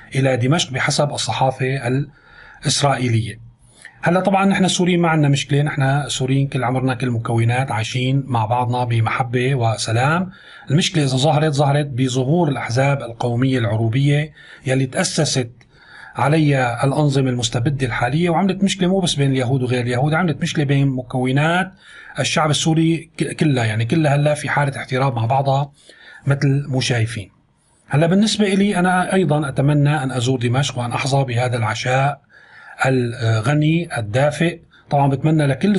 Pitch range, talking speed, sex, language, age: 130-155 Hz, 135 wpm, male, Arabic, 30-49